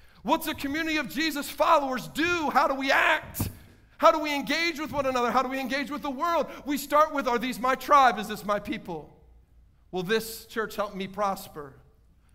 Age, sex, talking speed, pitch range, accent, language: 50-69, male, 205 wpm, 225-290 Hz, American, English